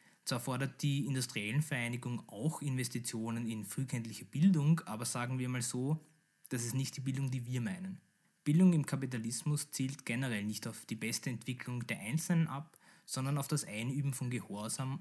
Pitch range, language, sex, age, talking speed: 120-150 Hz, German, male, 20-39, 170 wpm